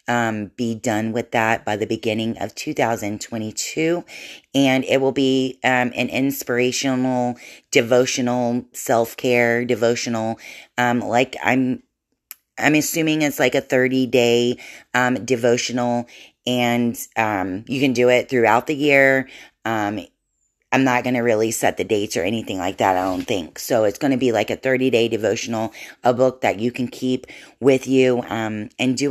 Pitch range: 115-130 Hz